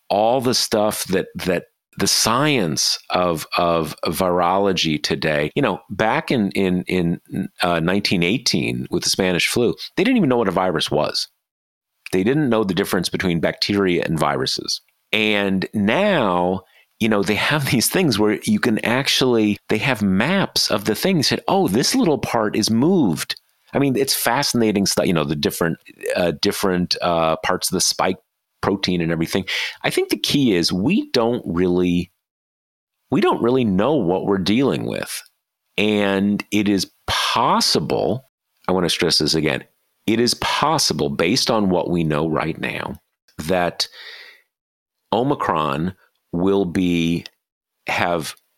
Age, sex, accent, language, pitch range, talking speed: 40-59, male, American, English, 85-105 Hz, 155 wpm